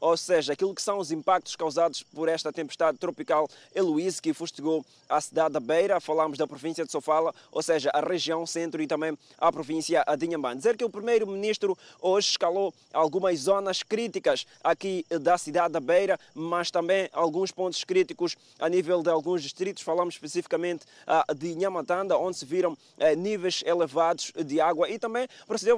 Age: 20-39